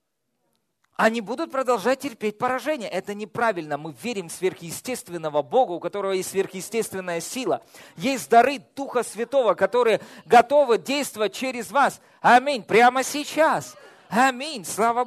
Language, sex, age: Russian, male, 40-59